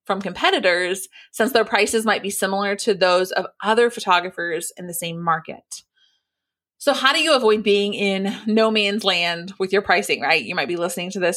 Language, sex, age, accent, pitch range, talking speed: English, female, 30-49, American, 185-240 Hz, 195 wpm